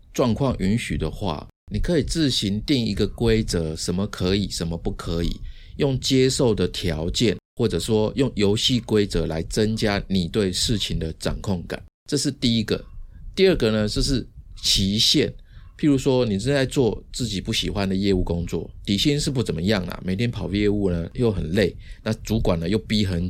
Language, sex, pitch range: Chinese, male, 90-120 Hz